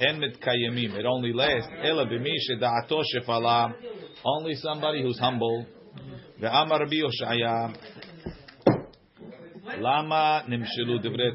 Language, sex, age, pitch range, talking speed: English, male, 40-59, 115-150 Hz, 70 wpm